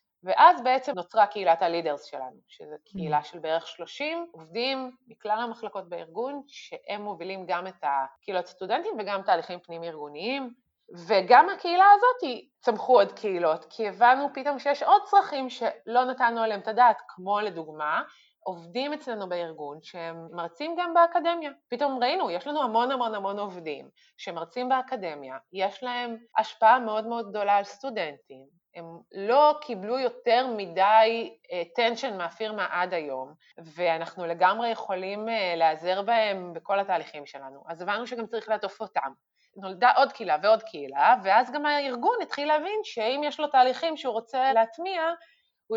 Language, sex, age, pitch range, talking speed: Hebrew, female, 30-49, 180-255 Hz, 145 wpm